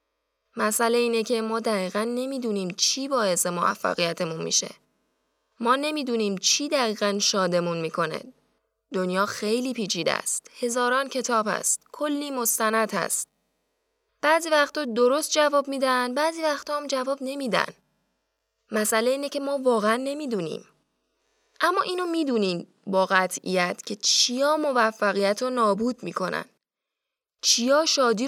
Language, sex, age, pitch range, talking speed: Persian, female, 10-29, 205-275 Hz, 115 wpm